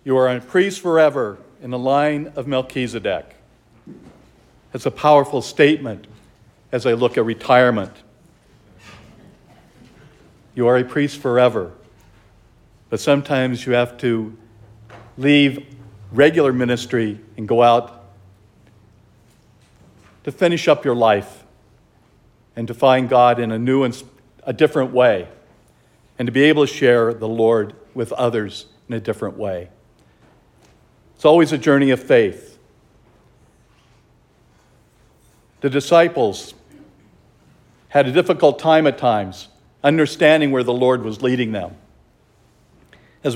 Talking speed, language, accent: 120 wpm, English, American